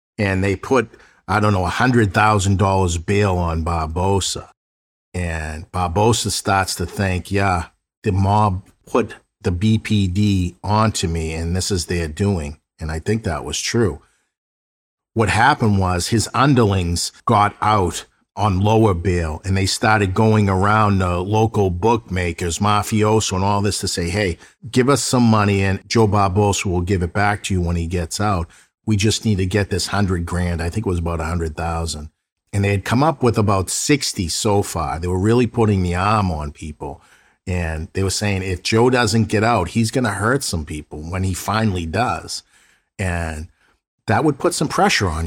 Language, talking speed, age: English, 180 wpm, 50-69